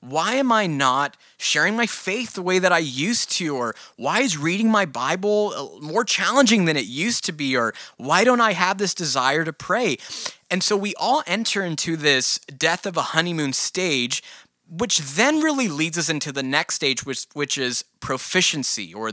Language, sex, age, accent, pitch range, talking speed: English, male, 20-39, American, 125-170 Hz, 190 wpm